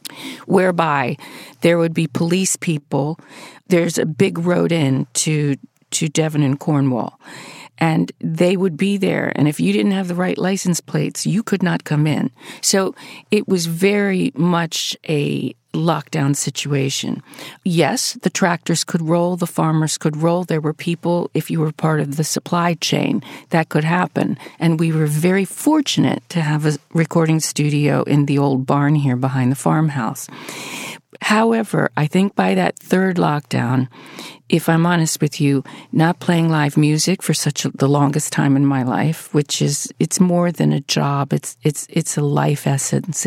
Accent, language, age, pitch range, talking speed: American, English, 50-69, 145-175 Hz, 170 wpm